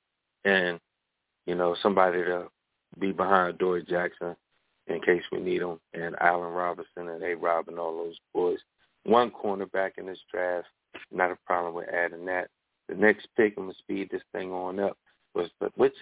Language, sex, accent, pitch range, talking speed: English, male, American, 90-110 Hz, 175 wpm